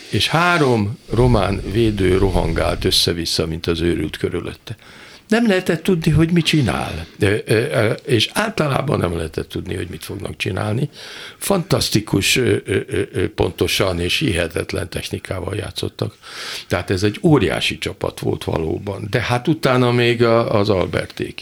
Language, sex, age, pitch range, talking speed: Hungarian, male, 50-69, 85-120 Hz, 125 wpm